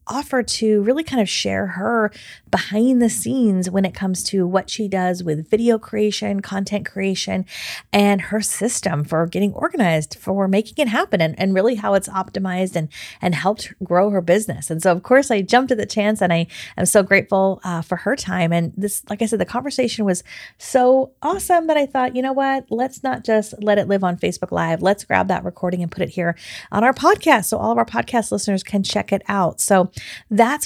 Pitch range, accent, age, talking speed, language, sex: 180-235 Hz, American, 30-49, 215 wpm, English, female